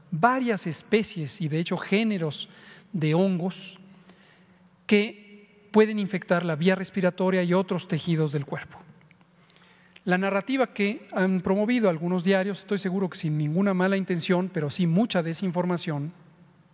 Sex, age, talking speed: male, 40-59, 135 wpm